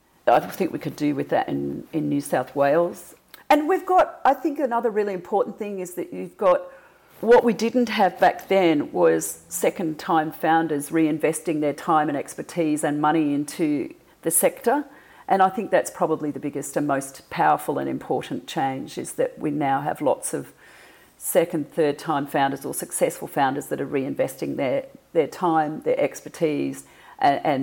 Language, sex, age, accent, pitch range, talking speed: English, female, 40-59, Australian, 145-205 Hz, 175 wpm